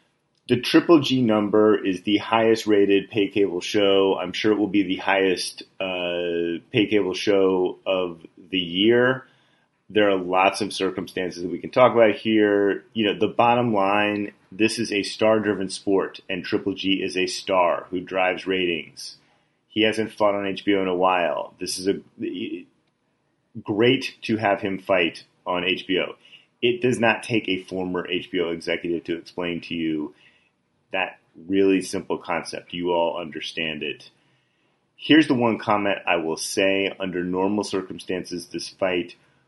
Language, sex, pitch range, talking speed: English, male, 90-110 Hz, 160 wpm